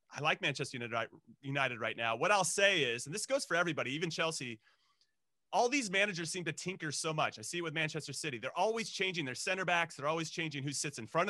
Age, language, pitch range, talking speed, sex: 30-49, English, 150-195 Hz, 235 wpm, male